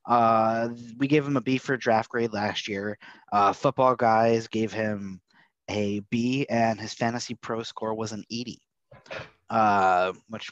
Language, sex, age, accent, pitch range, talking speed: English, male, 30-49, American, 100-120 Hz, 160 wpm